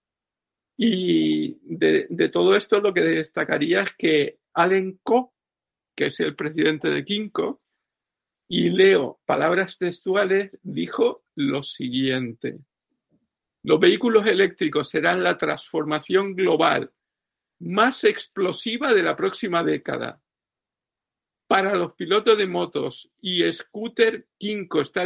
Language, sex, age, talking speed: Spanish, male, 50-69, 110 wpm